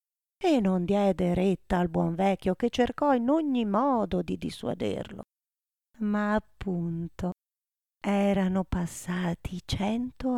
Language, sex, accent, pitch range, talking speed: Italian, female, native, 185-235 Hz, 110 wpm